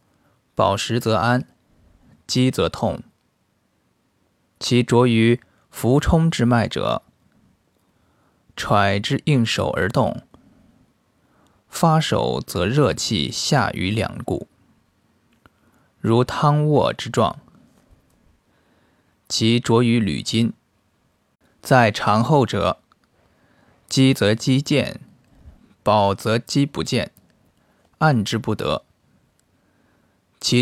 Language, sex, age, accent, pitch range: Chinese, male, 20-39, native, 105-130 Hz